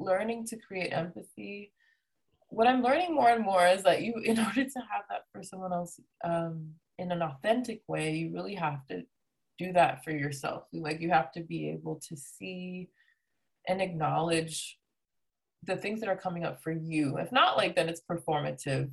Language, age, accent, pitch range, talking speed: English, 20-39, American, 155-195 Hz, 185 wpm